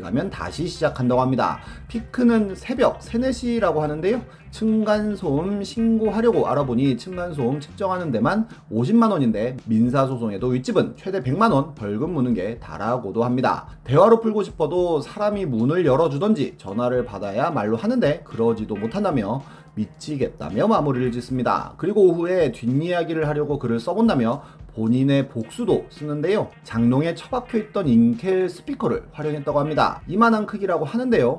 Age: 30-49